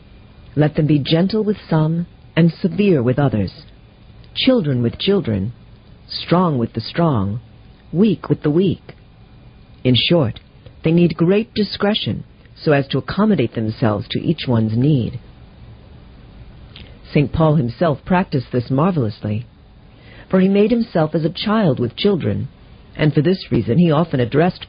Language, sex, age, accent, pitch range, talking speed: English, female, 50-69, American, 115-175 Hz, 140 wpm